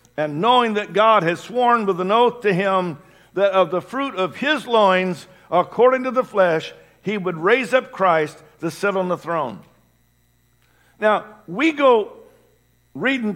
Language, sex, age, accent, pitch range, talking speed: English, male, 50-69, American, 175-240 Hz, 160 wpm